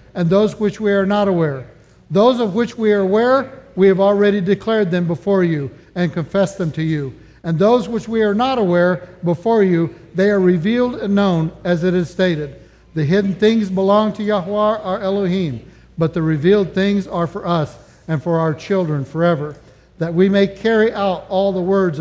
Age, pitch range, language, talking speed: 60-79, 155-200 Hz, English, 195 wpm